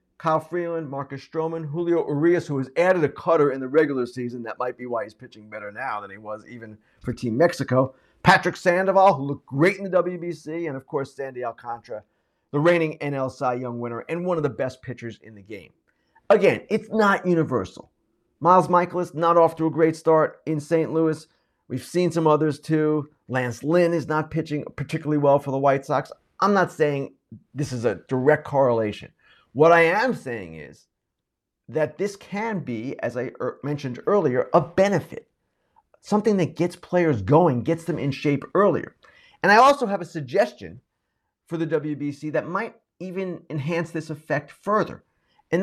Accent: American